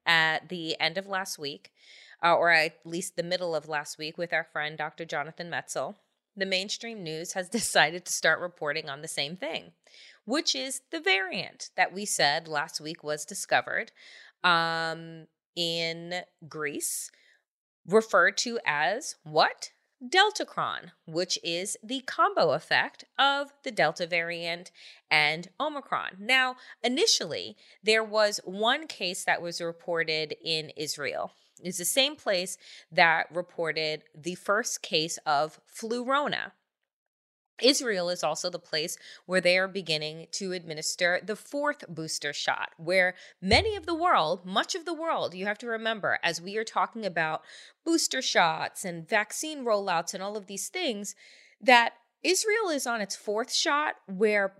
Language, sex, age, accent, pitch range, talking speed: English, female, 20-39, American, 165-235 Hz, 150 wpm